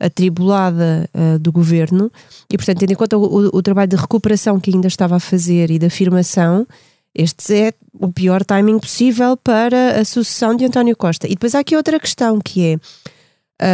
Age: 20-39